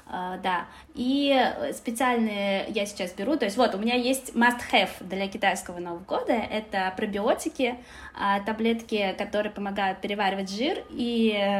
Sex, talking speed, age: female, 130 wpm, 20-39